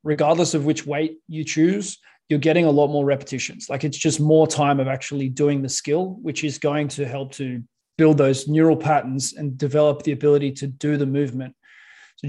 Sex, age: male, 20-39